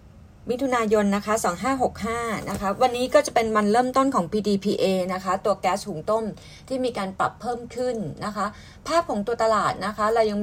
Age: 30-49